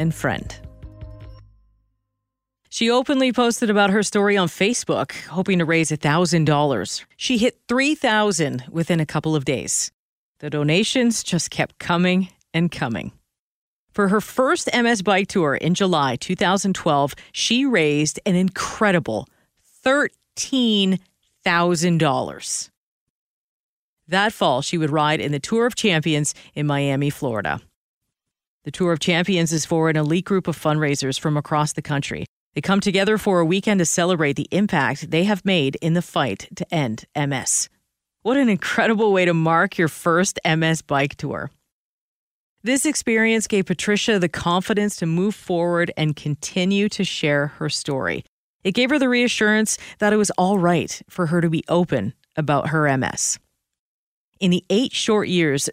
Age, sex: 40-59, female